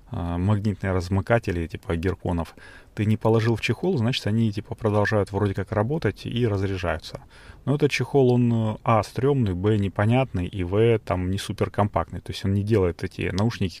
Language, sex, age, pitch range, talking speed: Russian, male, 30-49, 90-115 Hz, 170 wpm